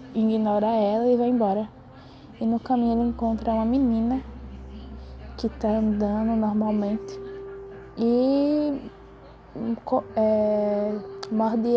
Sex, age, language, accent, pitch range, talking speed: female, 10-29, Portuguese, Brazilian, 210-250 Hz, 90 wpm